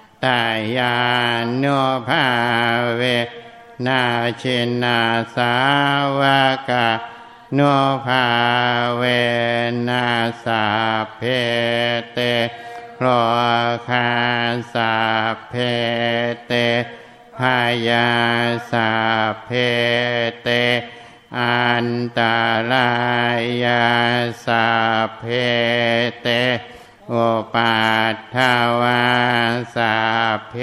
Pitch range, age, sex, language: 120-125 Hz, 60-79, male, Thai